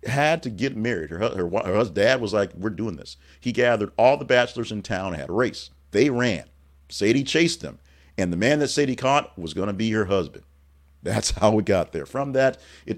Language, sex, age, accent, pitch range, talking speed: English, male, 40-59, American, 75-110 Hz, 225 wpm